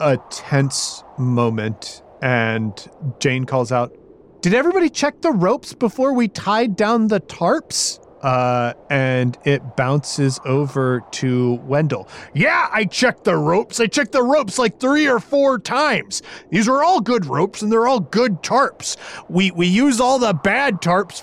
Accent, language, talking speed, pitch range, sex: American, English, 160 wpm, 125-185 Hz, male